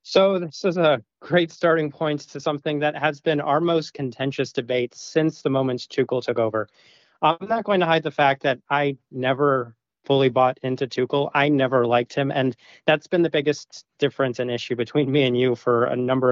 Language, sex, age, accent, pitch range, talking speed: English, male, 30-49, American, 120-155 Hz, 200 wpm